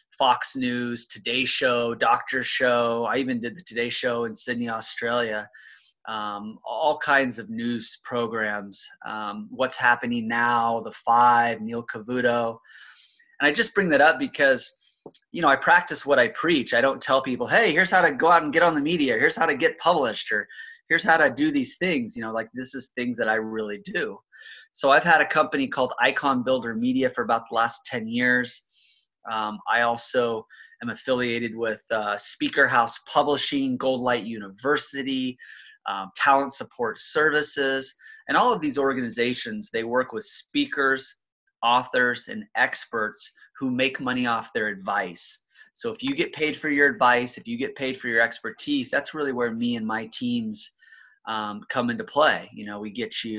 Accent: American